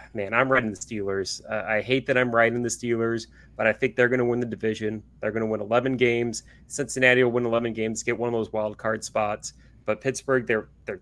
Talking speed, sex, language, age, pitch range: 240 wpm, male, English, 30-49, 110-125 Hz